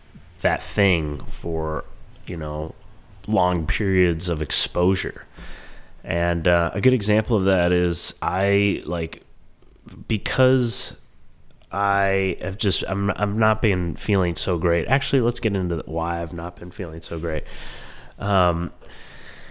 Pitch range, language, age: 75-95 Hz, English, 30-49